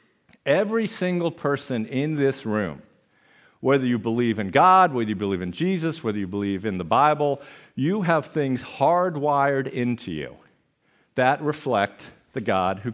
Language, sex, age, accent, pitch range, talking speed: English, male, 50-69, American, 115-160 Hz, 155 wpm